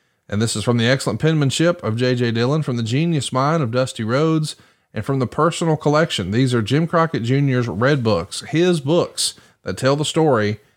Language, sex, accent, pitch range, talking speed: English, male, American, 115-160 Hz, 195 wpm